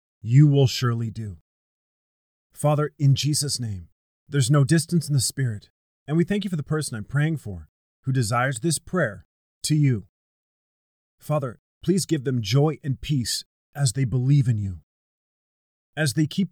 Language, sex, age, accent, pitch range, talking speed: English, male, 30-49, American, 110-150 Hz, 165 wpm